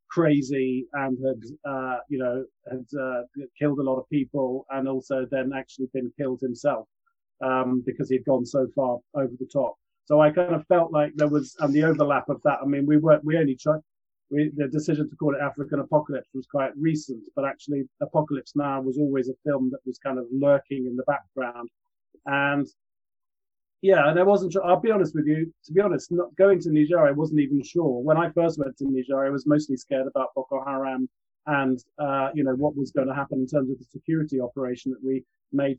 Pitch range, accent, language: 130-150 Hz, British, English